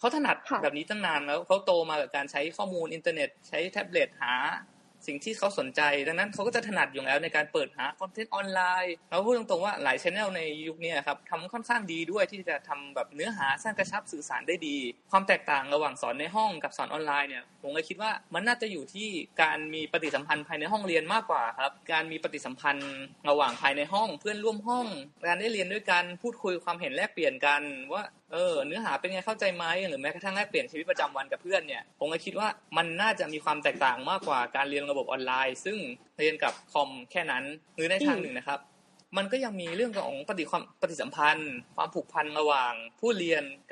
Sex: male